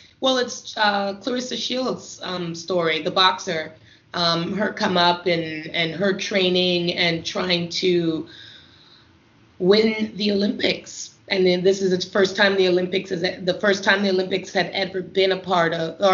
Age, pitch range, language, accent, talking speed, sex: 30-49, 165-190 Hz, English, American, 165 wpm, female